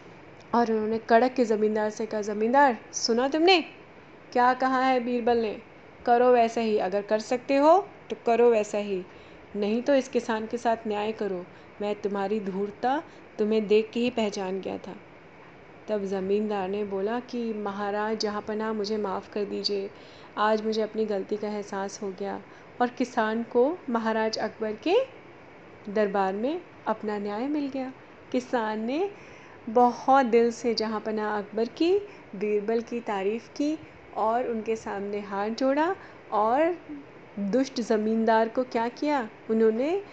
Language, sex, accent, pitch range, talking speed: Hindi, female, native, 215-255 Hz, 150 wpm